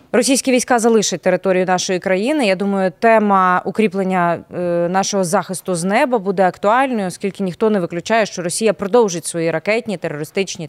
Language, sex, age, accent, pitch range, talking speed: Ukrainian, female, 20-39, native, 185-235 Hz, 150 wpm